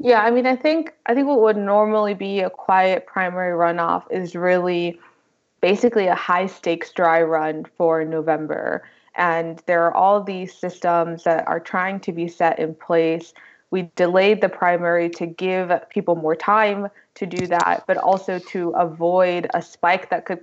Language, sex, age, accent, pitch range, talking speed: English, female, 20-39, American, 170-195 Hz, 170 wpm